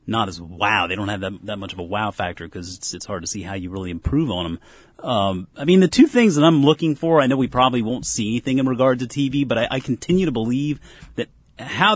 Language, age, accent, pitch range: English, 30-49, American, 95-135 Hz